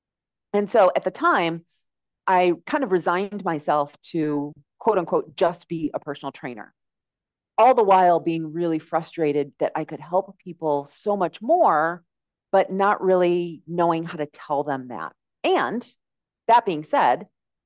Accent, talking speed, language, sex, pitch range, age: American, 155 wpm, English, female, 155-220 Hz, 40-59